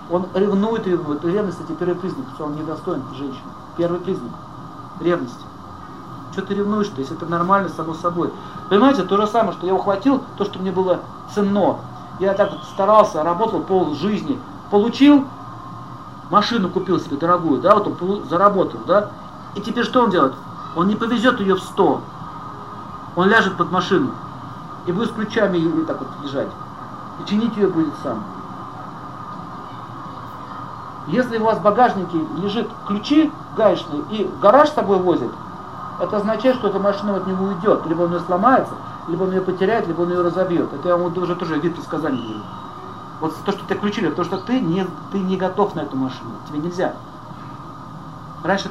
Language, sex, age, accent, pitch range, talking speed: Russian, male, 50-69, native, 160-205 Hz, 170 wpm